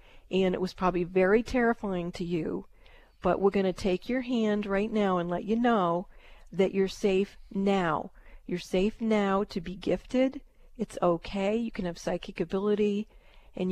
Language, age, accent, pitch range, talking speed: English, 40-59, American, 180-210 Hz, 170 wpm